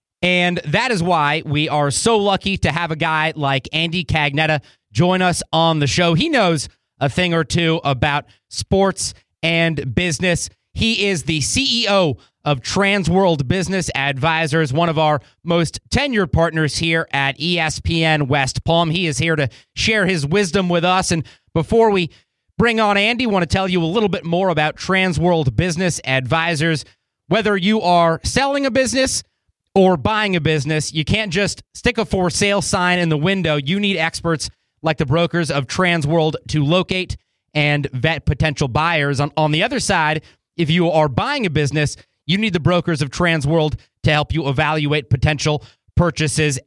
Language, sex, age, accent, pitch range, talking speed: English, male, 30-49, American, 150-185 Hz, 175 wpm